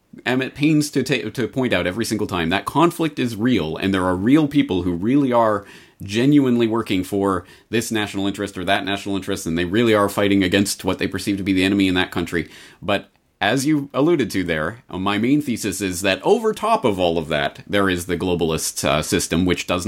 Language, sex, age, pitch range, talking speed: English, male, 30-49, 90-120 Hz, 225 wpm